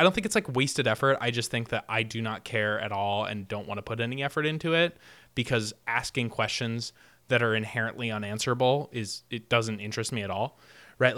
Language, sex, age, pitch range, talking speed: English, male, 20-39, 110-135 Hz, 220 wpm